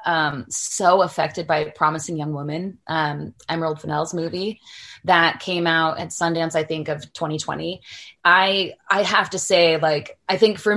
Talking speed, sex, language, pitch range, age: 160 wpm, female, English, 160-200 Hz, 20-39